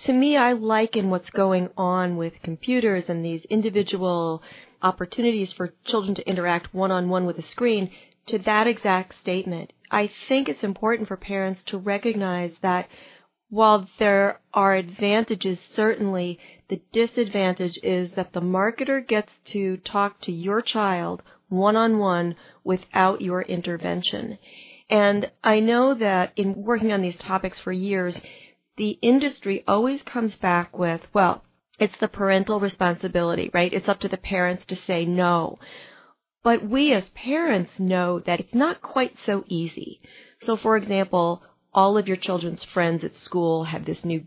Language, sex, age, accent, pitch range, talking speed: English, female, 40-59, American, 175-215 Hz, 150 wpm